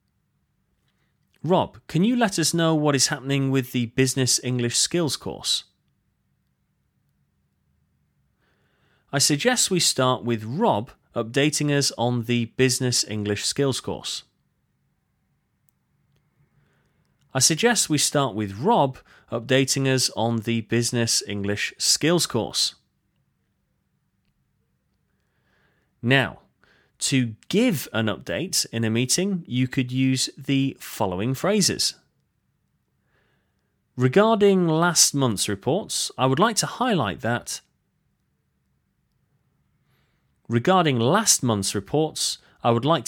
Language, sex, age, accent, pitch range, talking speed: English, male, 30-49, British, 115-150 Hz, 105 wpm